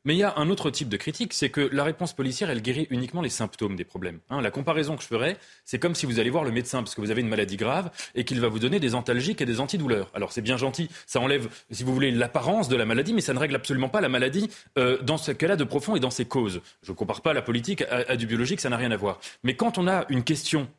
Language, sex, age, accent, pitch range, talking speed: French, male, 30-49, French, 125-175 Hz, 305 wpm